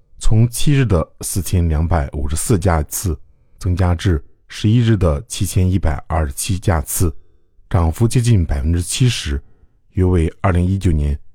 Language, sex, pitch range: Chinese, male, 80-105 Hz